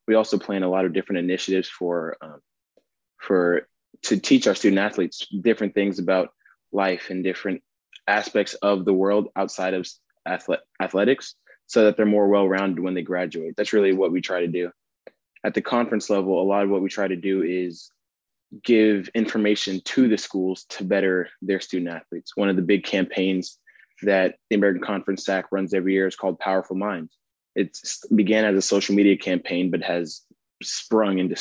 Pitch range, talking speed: 95-105 Hz, 180 wpm